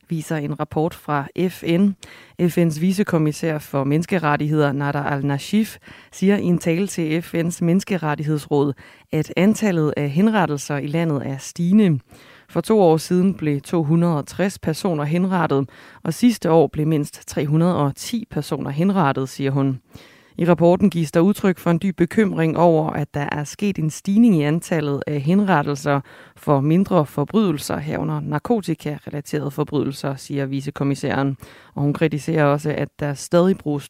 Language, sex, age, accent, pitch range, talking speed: Danish, female, 30-49, native, 145-175 Hz, 140 wpm